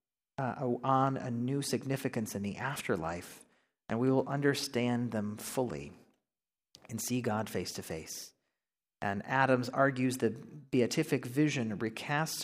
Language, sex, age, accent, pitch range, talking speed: English, male, 40-59, American, 120-145 Hz, 130 wpm